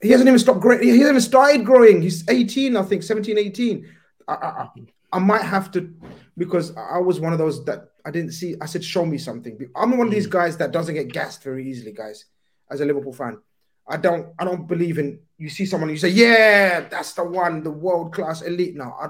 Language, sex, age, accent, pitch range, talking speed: English, male, 30-49, British, 140-200 Hz, 235 wpm